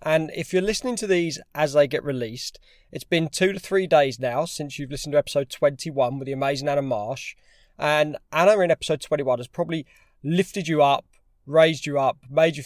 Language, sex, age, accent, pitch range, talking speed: English, male, 20-39, British, 135-165 Hz, 205 wpm